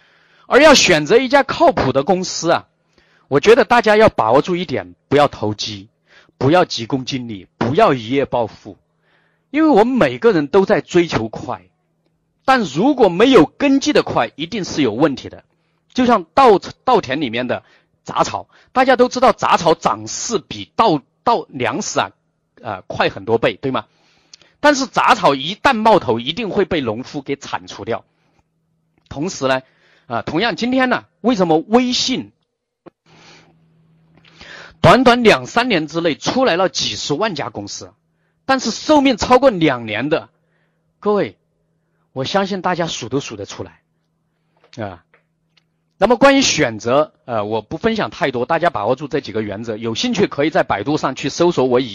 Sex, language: male, Chinese